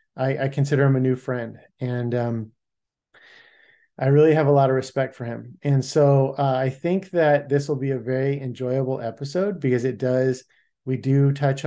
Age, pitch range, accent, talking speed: 30-49, 125-155 Hz, American, 190 wpm